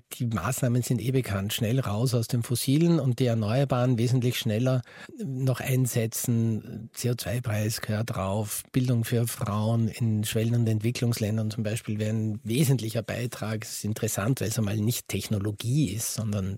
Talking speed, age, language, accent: 155 wpm, 50-69, German, Austrian